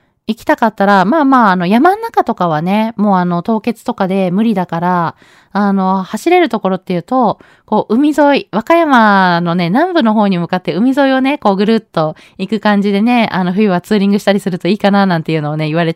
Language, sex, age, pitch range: Japanese, female, 20-39, 175-235 Hz